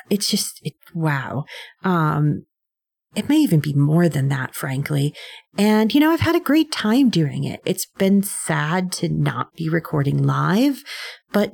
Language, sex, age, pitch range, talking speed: English, female, 40-59, 150-195 Hz, 165 wpm